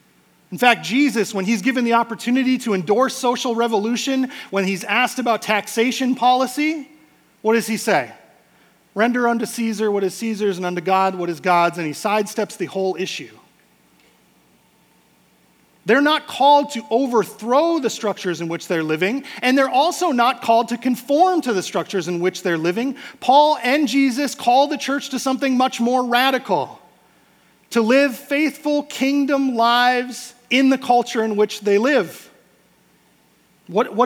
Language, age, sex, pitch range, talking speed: English, 40-59, male, 195-260 Hz, 160 wpm